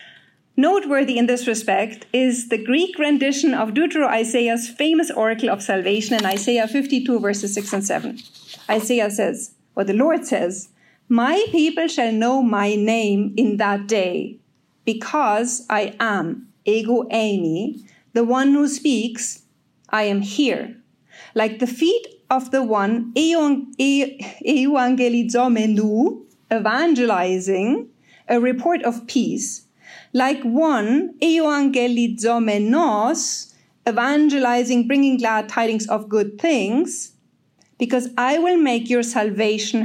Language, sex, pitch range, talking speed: English, female, 220-275 Hz, 115 wpm